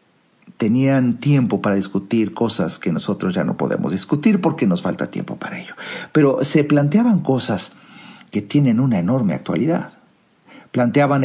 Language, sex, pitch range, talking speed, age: Spanish, male, 125-165 Hz, 145 wpm, 50-69